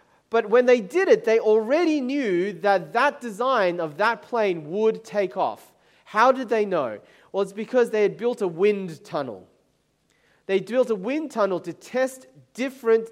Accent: Australian